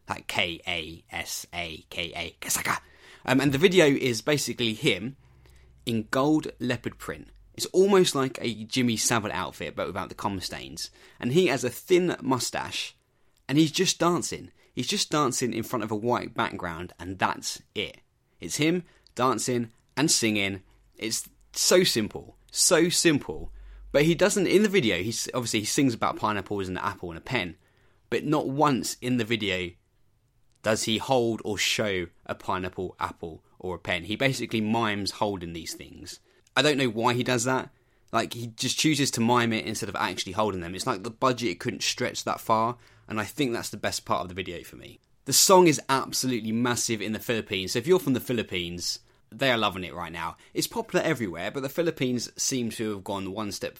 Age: 20-39